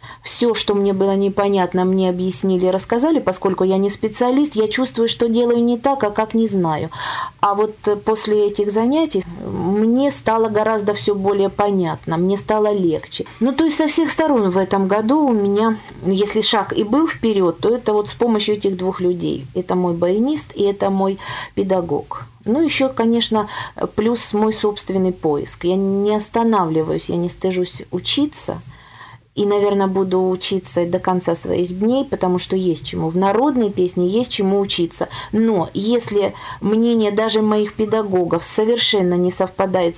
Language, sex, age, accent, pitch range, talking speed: Russian, female, 40-59, native, 185-225 Hz, 160 wpm